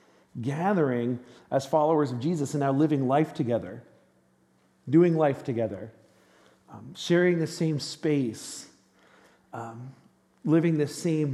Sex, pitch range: male, 125-155 Hz